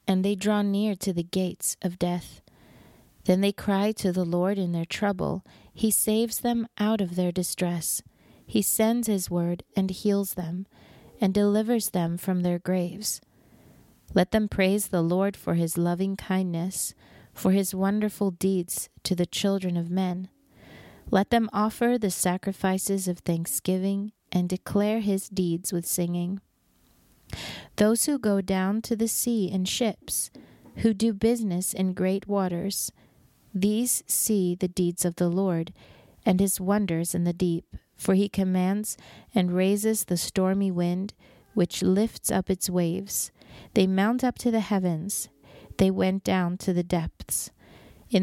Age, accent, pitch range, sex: 30-49, American, 180-205 Hz, female